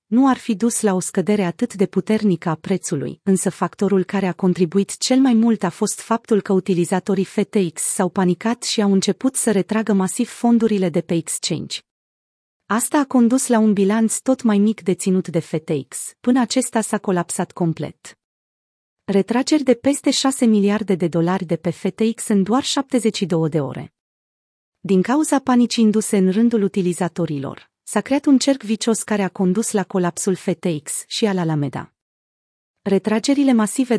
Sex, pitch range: female, 185-235 Hz